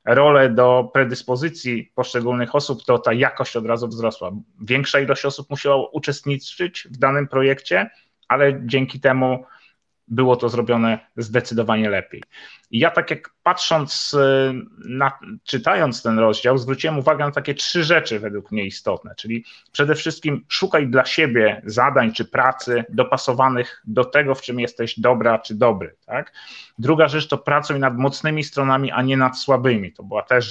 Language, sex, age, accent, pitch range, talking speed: Polish, male, 30-49, native, 115-140 Hz, 155 wpm